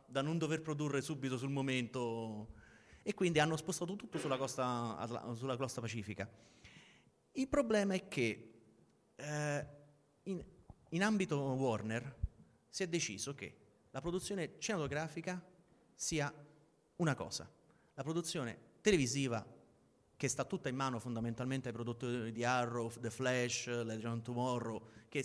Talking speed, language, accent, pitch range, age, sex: 130 wpm, Italian, native, 115-150 Hz, 30-49, male